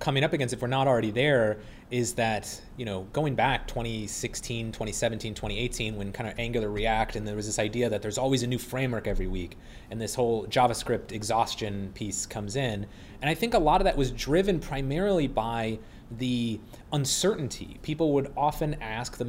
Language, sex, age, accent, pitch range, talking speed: English, male, 30-49, American, 110-140 Hz, 190 wpm